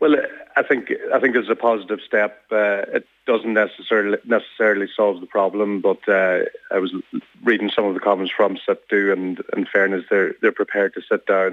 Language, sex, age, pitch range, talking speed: English, male, 30-49, 95-105 Hz, 195 wpm